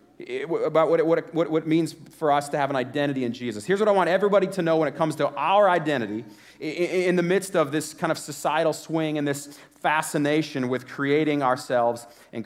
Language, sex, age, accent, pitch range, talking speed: English, male, 30-49, American, 140-175 Hz, 210 wpm